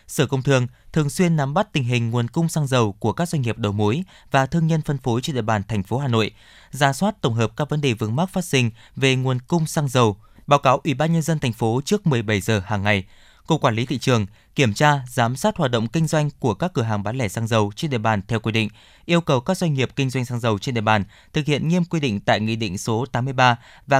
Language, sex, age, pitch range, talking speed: Vietnamese, male, 20-39, 115-150 Hz, 275 wpm